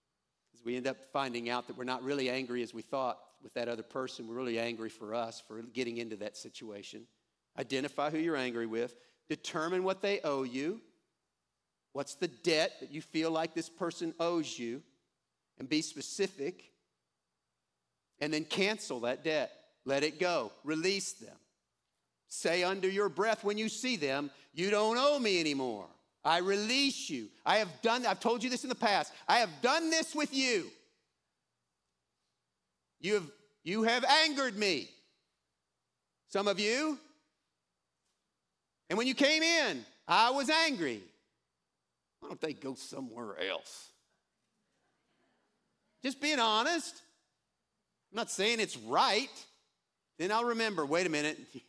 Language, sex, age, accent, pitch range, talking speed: English, male, 50-69, American, 135-225 Hz, 150 wpm